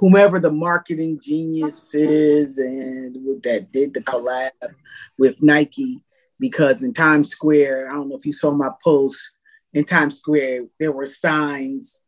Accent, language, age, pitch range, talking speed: American, English, 30-49, 140-175 Hz, 150 wpm